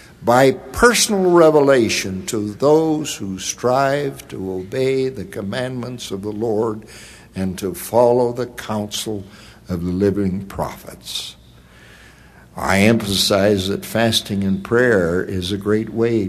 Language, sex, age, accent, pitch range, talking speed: English, male, 60-79, American, 95-115 Hz, 120 wpm